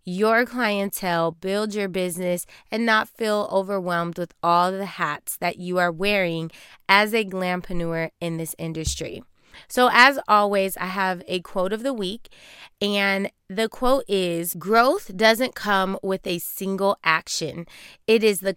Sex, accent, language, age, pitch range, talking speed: female, American, English, 20-39, 185-225 Hz, 150 wpm